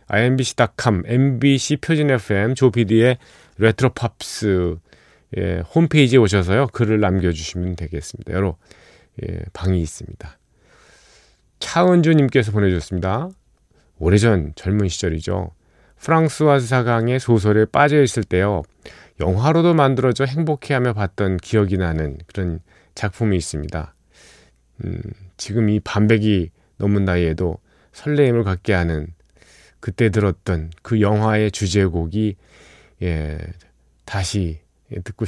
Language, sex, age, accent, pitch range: Korean, male, 40-59, native, 90-125 Hz